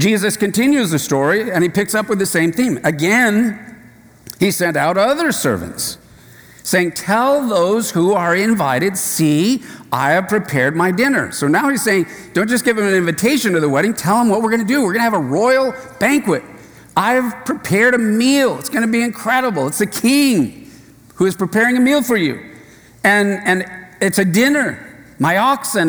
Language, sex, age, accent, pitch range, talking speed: English, male, 50-69, American, 165-240 Hz, 190 wpm